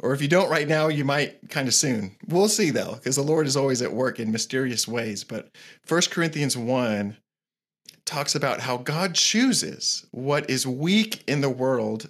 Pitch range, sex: 125-175 Hz, male